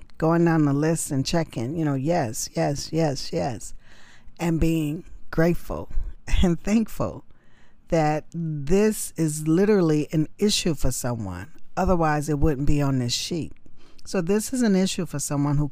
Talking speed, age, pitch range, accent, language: 155 wpm, 40-59, 145-185 Hz, American, English